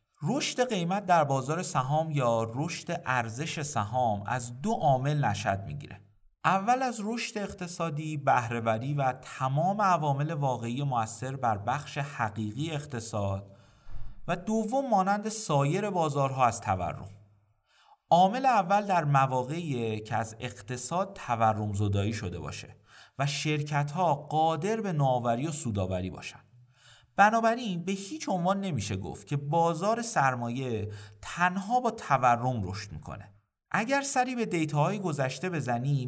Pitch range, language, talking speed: 115-180 Hz, Persian, 120 wpm